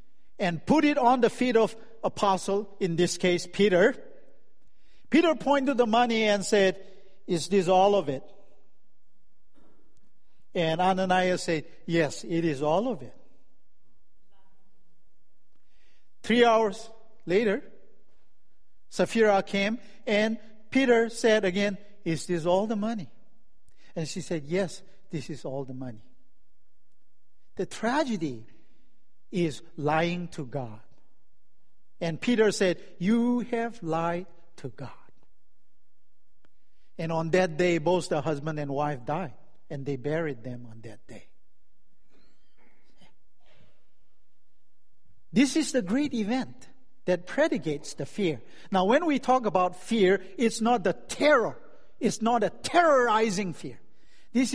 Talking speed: 120 wpm